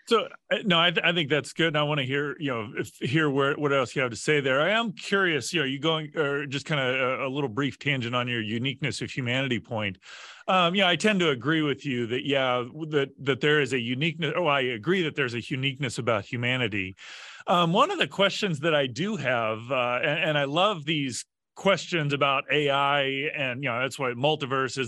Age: 30-49